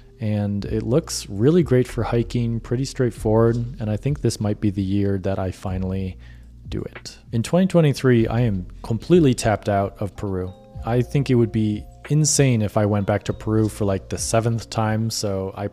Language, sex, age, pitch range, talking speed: English, male, 20-39, 105-125 Hz, 190 wpm